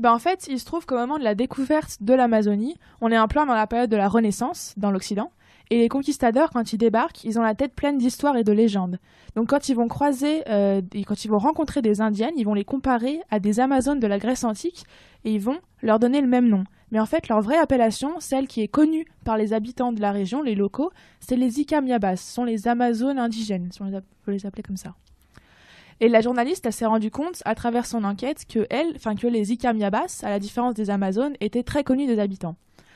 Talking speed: 240 wpm